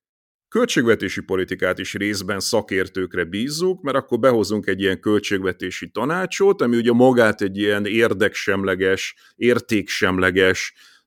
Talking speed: 110 wpm